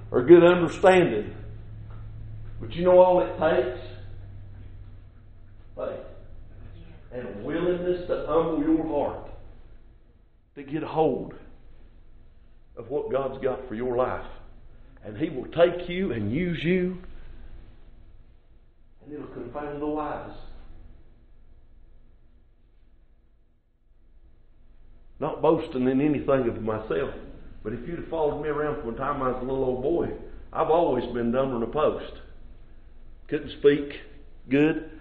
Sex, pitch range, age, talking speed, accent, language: male, 105-155 Hz, 50-69, 125 wpm, American, English